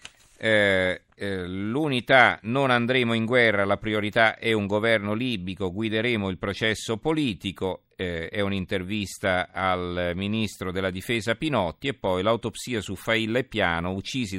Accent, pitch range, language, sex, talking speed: native, 95-115 Hz, Italian, male, 140 wpm